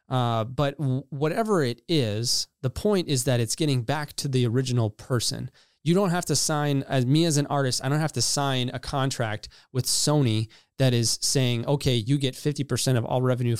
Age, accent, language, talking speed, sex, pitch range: 20-39, American, English, 200 wpm, male, 120-145 Hz